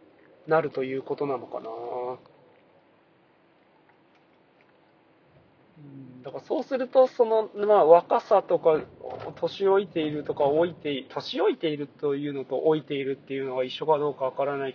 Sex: male